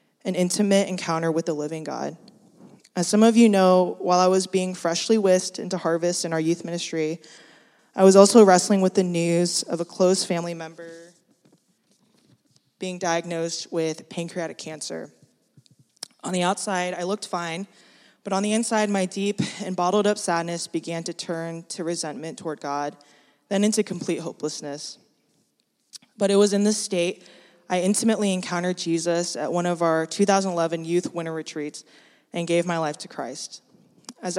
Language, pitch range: English, 165-195 Hz